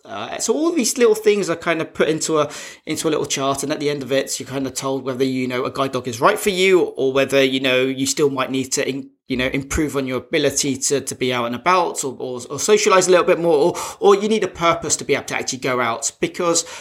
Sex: male